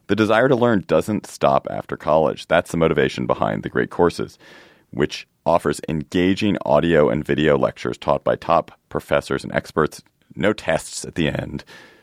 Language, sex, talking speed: English, male, 165 wpm